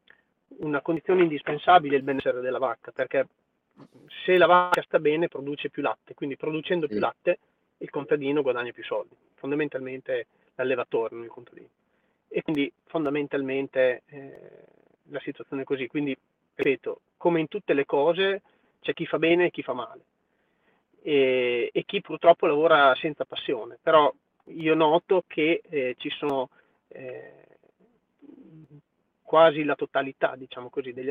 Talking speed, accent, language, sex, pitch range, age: 145 wpm, native, Italian, male, 135-170 Hz, 30-49